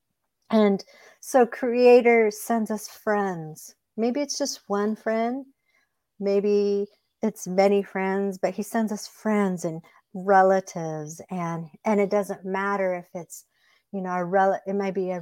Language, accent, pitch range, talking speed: English, American, 175-205 Hz, 145 wpm